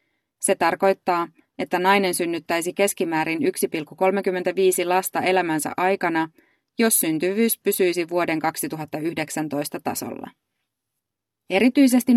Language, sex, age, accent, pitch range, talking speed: Finnish, female, 20-39, native, 160-195 Hz, 85 wpm